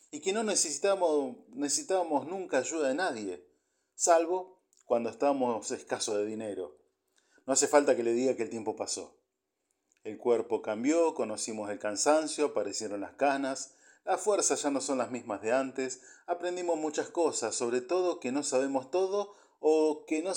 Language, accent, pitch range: Spanish, Argentinian, 120-160 Hz